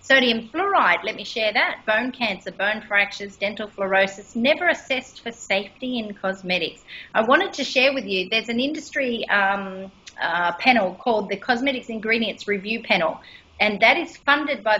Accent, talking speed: Australian, 165 wpm